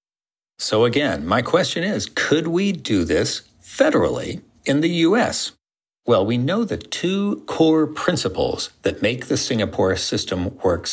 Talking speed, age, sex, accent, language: 145 wpm, 50-69, male, American, English